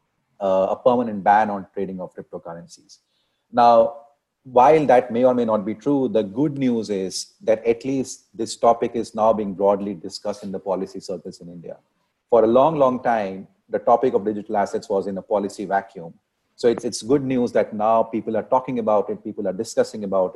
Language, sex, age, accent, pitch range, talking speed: English, male, 30-49, Indian, 100-130 Hz, 200 wpm